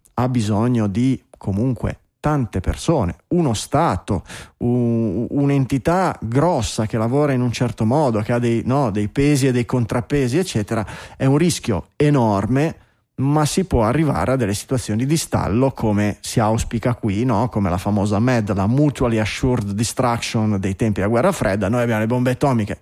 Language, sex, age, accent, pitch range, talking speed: Italian, male, 20-39, native, 105-135 Hz, 165 wpm